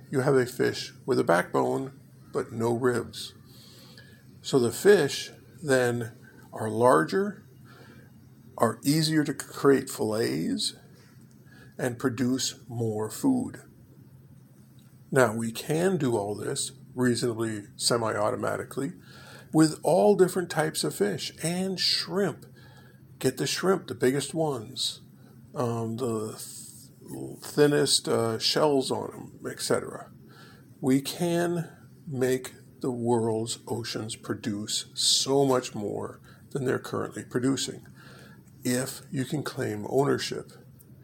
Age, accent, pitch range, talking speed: 50-69, American, 120-140 Hz, 110 wpm